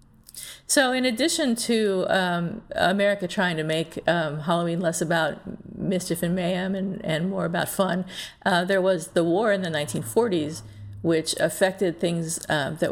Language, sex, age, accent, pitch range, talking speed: English, female, 50-69, American, 160-195 Hz, 160 wpm